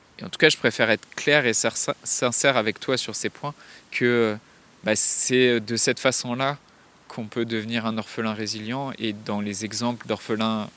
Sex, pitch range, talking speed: male, 105-120 Hz, 180 wpm